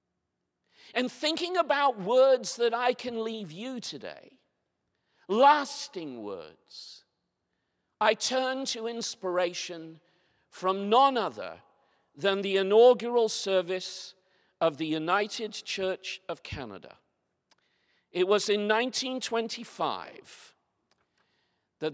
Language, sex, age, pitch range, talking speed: English, male, 50-69, 160-225 Hz, 95 wpm